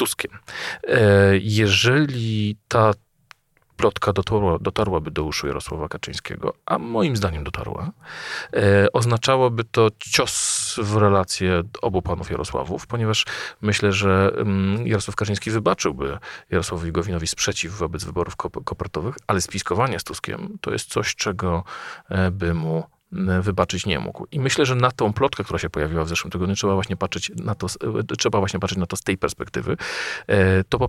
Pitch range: 95-115 Hz